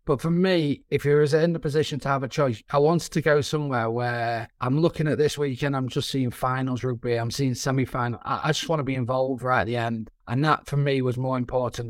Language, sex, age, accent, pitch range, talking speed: English, male, 30-49, British, 125-145 Hz, 240 wpm